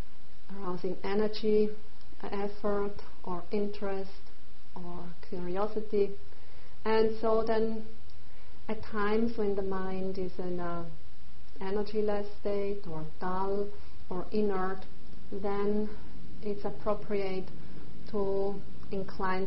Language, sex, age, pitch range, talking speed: English, female, 40-59, 180-205 Hz, 90 wpm